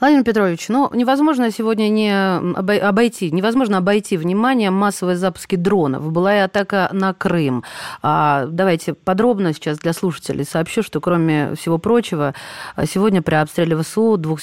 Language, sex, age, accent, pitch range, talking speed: Russian, female, 30-49, native, 155-205 Hz, 140 wpm